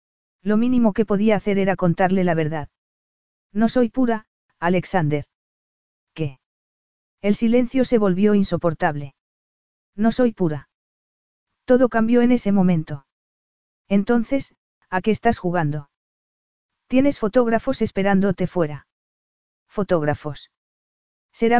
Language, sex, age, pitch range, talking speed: Spanish, female, 40-59, 170-225 Hz, 105 wpm